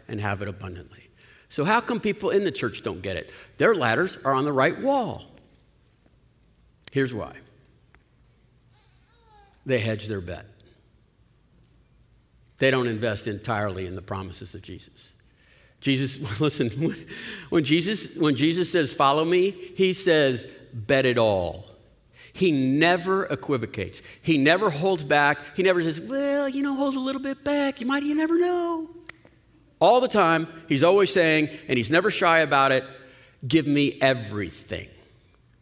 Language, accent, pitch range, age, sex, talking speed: English, American, 115-170 Hz, 50-69, male, 150 wpm